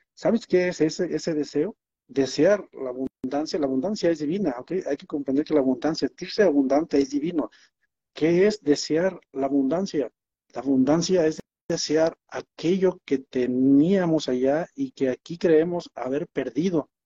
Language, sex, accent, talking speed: Spanish, male, Mexican, 150 wpm